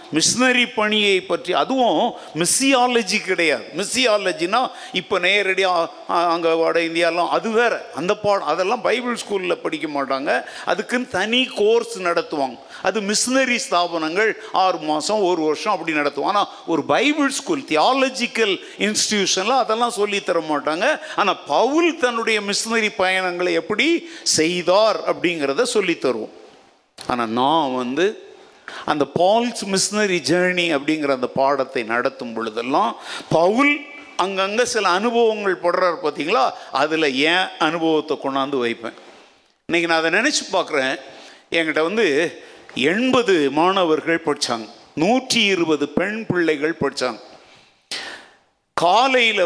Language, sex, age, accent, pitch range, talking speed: Tamil, male, 50-69, native, 165-240 Hz, 80 wpm